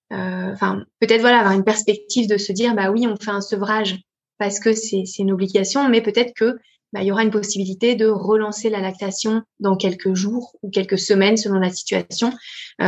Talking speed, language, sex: 205 wpm, French, female